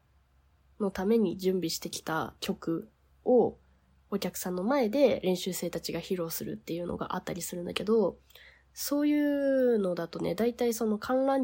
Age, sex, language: 20-39, female, Japanese